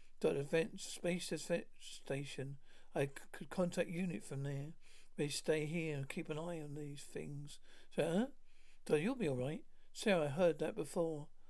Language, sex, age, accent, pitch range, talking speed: English, male, 60-79, British, 150-185 Hz, 170 wpm